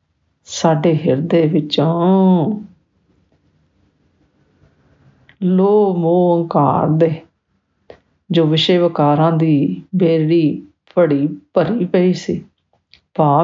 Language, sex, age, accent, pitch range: English, female, 50-69, Indian, 145-180 Hz